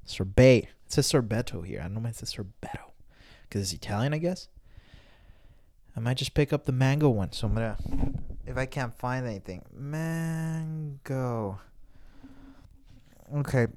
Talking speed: 155 wpm